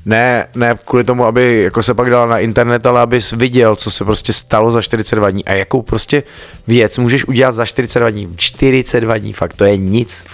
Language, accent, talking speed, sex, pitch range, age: Czech, native, 215 wpm, male, 100-120 Hz, 20-39